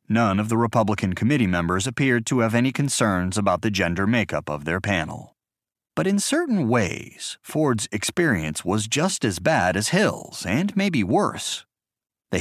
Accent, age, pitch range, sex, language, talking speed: American, 30-49, 95-130 Hz, male, English, 165 wpm